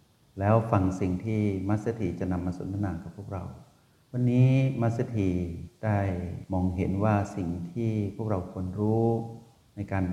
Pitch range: 95-115 Hz